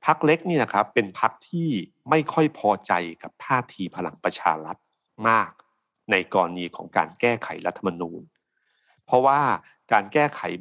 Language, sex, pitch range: Thai, male, 95-135 Hz